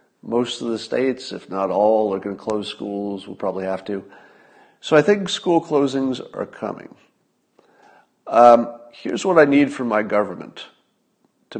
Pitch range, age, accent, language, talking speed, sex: 105-135 Hz, 40-59, American, English, 170 wpm, male